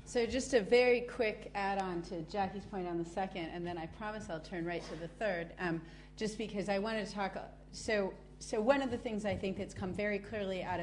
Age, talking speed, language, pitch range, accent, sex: 40-59, 235 wpm, English, 180-210 Hz, American, female